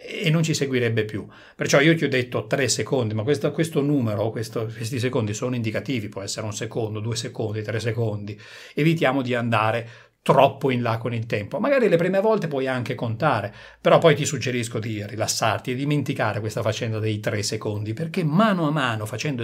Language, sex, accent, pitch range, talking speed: Italian, male, native, 115-170 Hz, 190 wpm